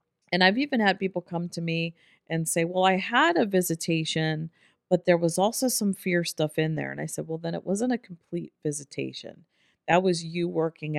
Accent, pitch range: American, 150-175 Hz